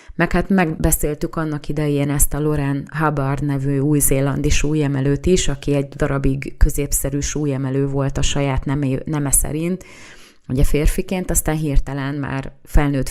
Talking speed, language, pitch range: 135 wpm, Hungarian, 135-150 Hz